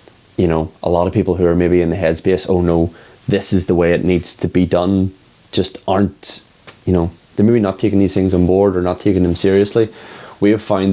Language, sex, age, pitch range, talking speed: English, male, 20-39, 85-95 Hz, 235 wpm